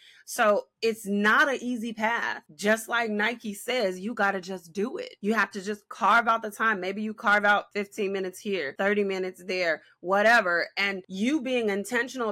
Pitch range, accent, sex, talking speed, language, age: 185-230 Hz, American, female, 190 wpm, English, 20-39